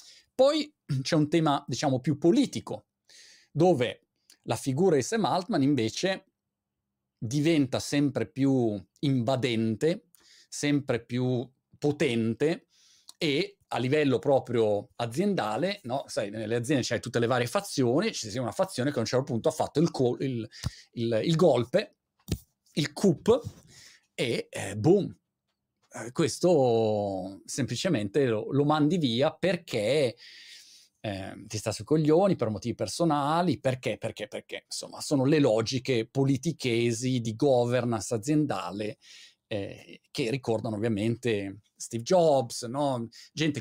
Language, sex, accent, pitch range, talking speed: Italian, male, native, 115-150 Hz, 125 wpm